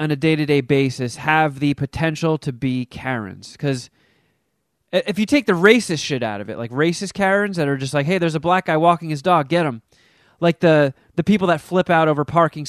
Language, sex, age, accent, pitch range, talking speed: English, male, 30-49, American, 135-180 Hz, 220 wpm